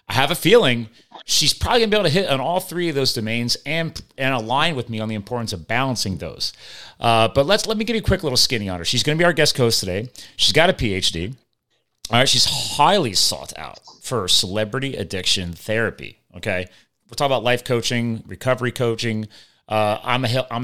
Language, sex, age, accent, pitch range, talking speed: English, male, 30-49, American, 105-130 Hz, 215 wpm